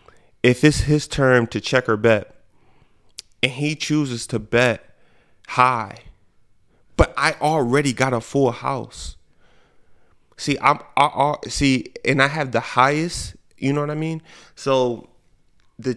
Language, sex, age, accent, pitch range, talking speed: English, male, 20-39, American, 110-130 Hz, 145 wpm